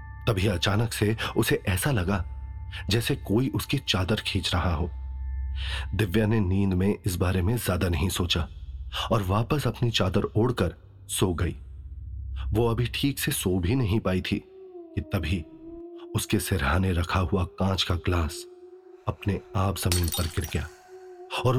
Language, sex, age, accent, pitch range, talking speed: Hindi, male, 30-49, native, 90-120 Hz, 155 wpm